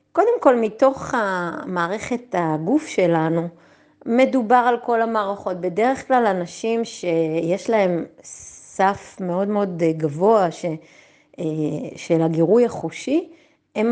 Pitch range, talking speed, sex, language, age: 185-260 Hz, 105 wpm, female, Hebrew, 30-49